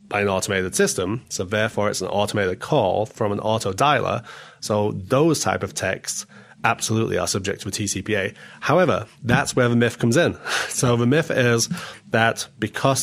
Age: 30-49